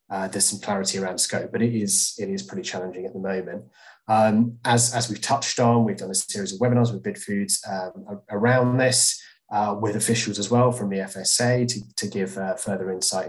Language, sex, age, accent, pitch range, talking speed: English, male, 20-39, British, 95-120 Hz, 215 wpm